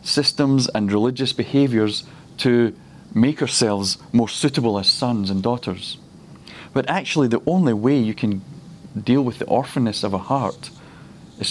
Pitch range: 105-135 Hz